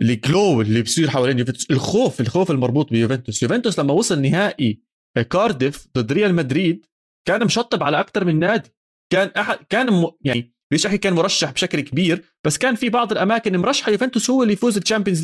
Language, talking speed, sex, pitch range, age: Arabic, 170 wpm, male, 125-175 Hz, 20-39